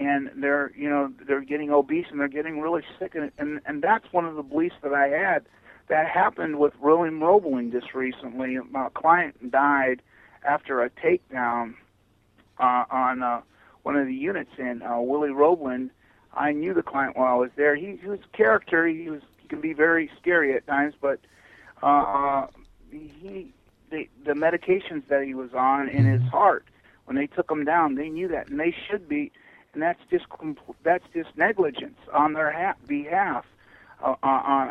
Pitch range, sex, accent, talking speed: 130-160 Hz, male, American, 180 wpm